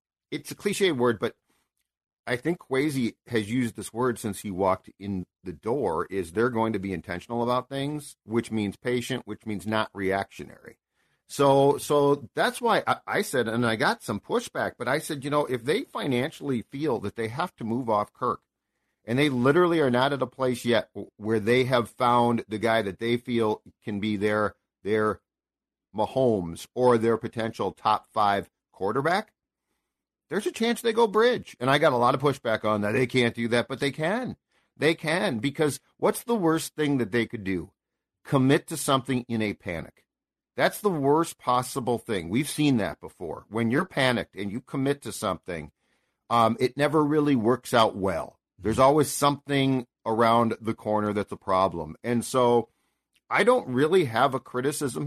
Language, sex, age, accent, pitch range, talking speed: English, male, 50-69, American, 110-145 Hz, 185 wpm